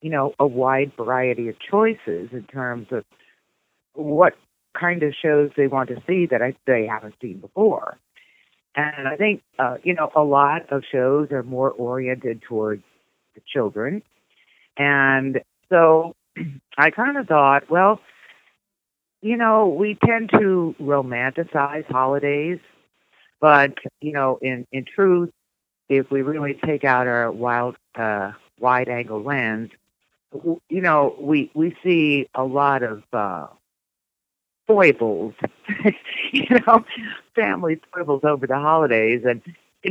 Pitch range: 120-155 Hz